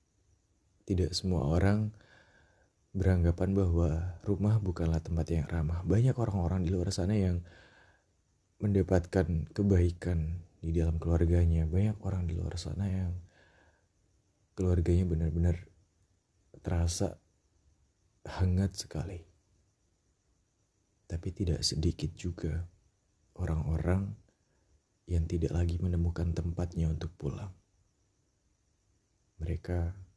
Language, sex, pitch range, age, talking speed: Indonesian, male, 85-100 Hz, 30-49, 90 wpm